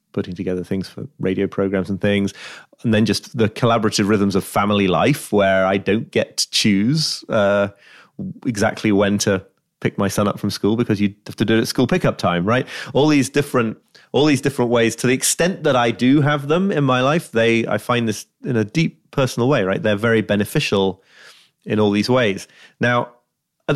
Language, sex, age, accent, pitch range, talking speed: English, male, 30-49, British, 100-125 Hz, 205 wpm